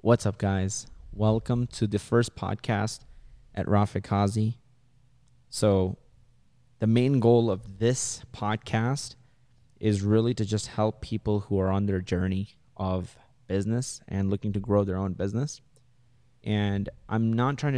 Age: 20-39